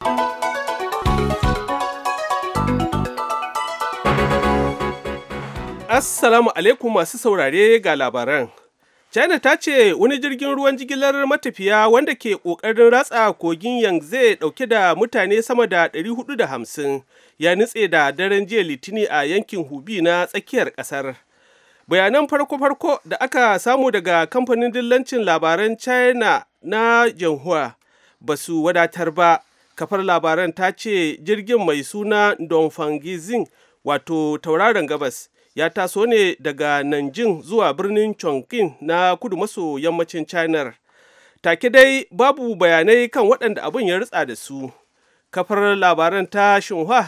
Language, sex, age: English, male, 40-59